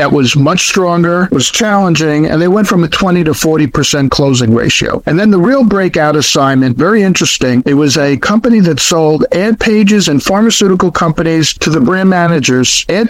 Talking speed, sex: 185 wpm, male